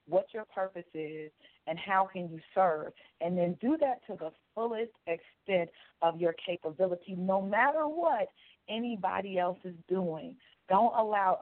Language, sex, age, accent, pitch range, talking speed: English, female, 40-59, American, 170-205 Hz, 150 wpm